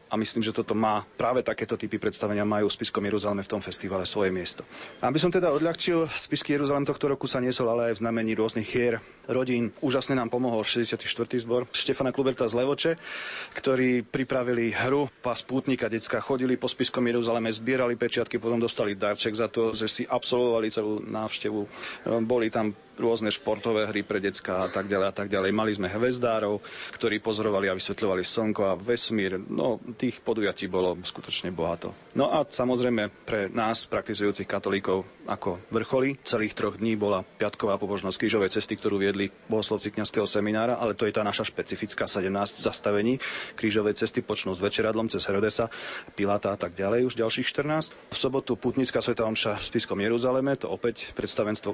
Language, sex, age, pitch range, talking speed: Slovak, male, 40-59, 105-125 Hz, 175 wpm